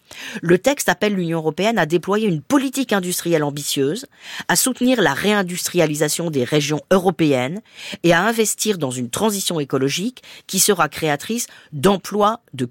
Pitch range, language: 145-210 Hz, French